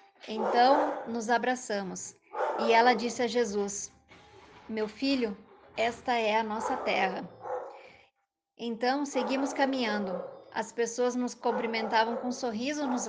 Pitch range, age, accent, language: 220-255 Hz, 20-39, Brazilian, Portuguese